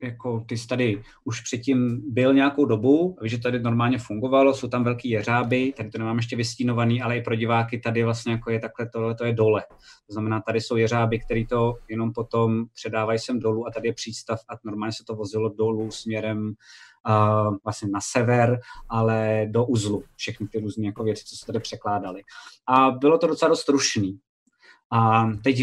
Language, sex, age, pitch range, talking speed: Czech, male, 20-39, 110-125 Hz, 190 wpm